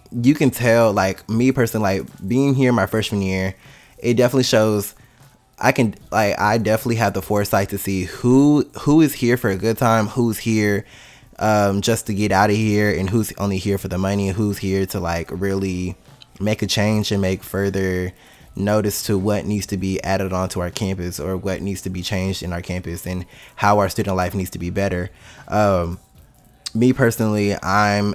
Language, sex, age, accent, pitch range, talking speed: English, male, 20-39, American, 95-110 Hz, 195 wpm